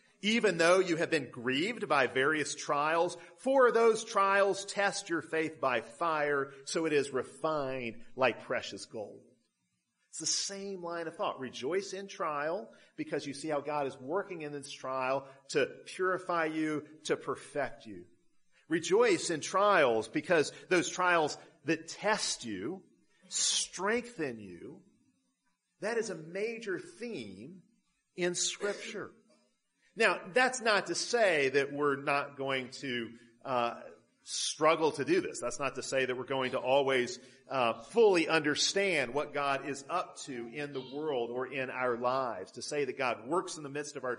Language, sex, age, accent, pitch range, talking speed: English, male, 40-59, American, 130-195 Hz, 160 wpm